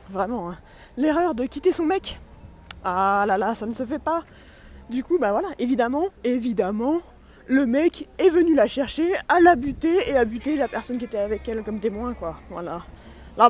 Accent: French